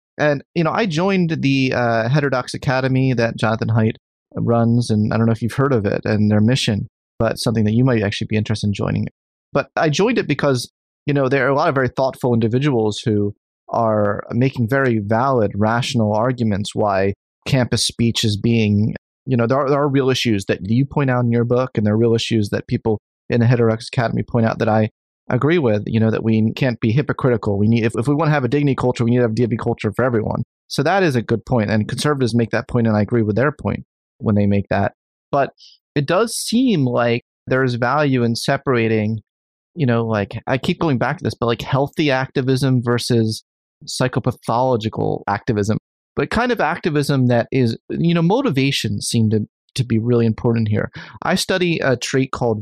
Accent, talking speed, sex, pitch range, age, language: American, 215 wpm, male, 110-135 Hz, 30-49, English